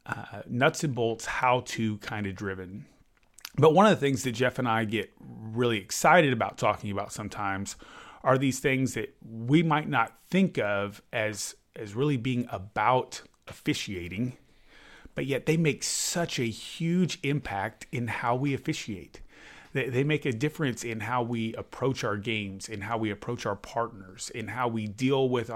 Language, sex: English, male